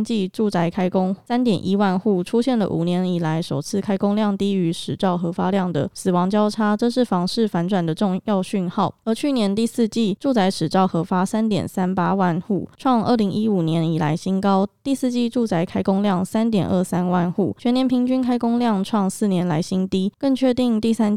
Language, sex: Chinese, female